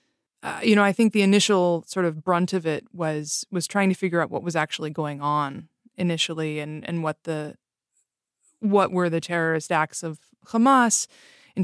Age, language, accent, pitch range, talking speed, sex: 20-39, English, American, 160-195 Hz, 185 wpm, female